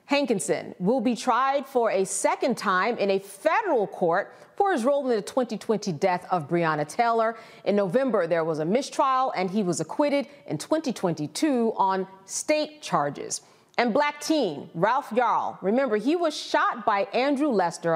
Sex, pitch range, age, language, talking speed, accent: female, 185-270 Hz, 40-59, English, 165 wpm, American